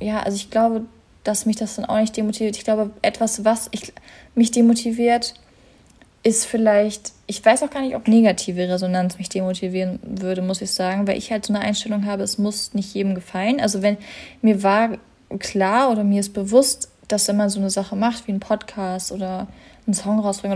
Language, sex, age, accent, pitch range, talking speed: German, female, 20-39, German, 195-225 Hz, 200 wpm